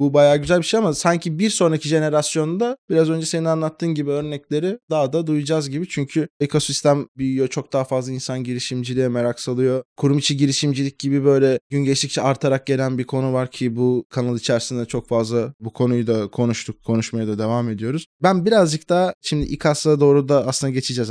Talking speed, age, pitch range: 185 wpm, 20-39, 125-155 Hz